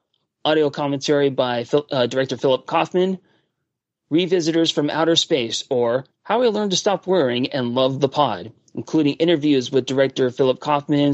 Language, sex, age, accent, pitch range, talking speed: English, male, 40-59, American, 130-160 Hz, 155 wpm